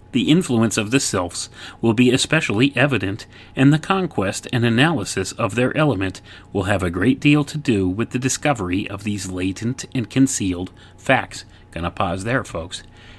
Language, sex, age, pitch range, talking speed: English, male, 30-49, 95-125 Hz, 175 wpm